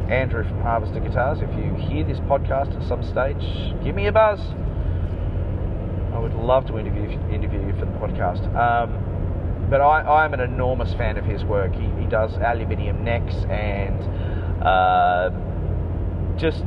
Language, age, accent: English, 30-49, Australian